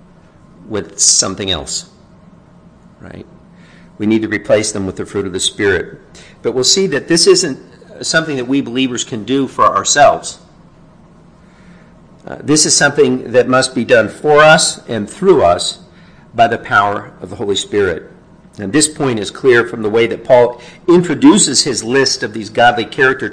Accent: American